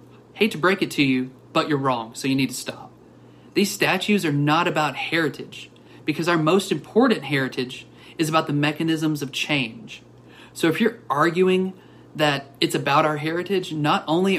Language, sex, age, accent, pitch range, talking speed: English, male, 30-49, American, 140-185 Hz, 175 wpm